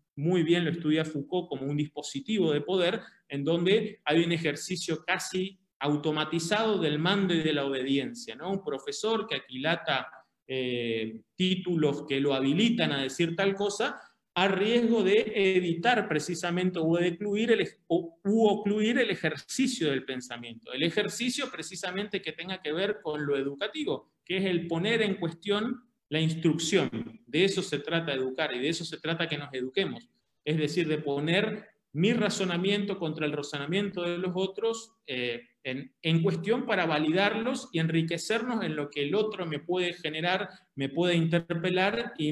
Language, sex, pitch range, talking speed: Spanish, male, 155-200 Hz, 160 wpm